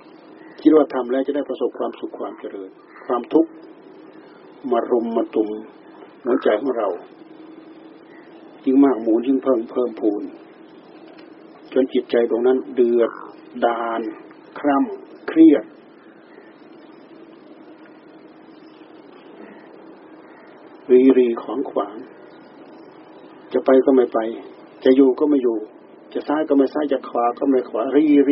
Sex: male